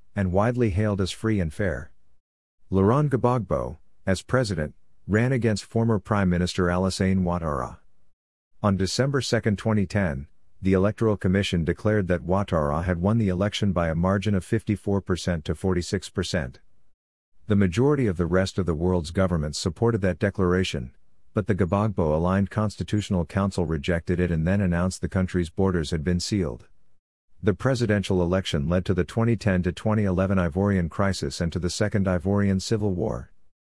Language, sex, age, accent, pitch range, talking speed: English, male, 50-69, American, 85-105 Hz, 150 wpm